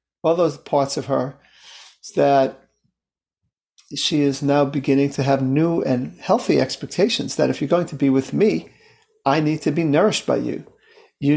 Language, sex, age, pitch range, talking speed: English, male, 40-59, 140-175 Hz, 170 wpm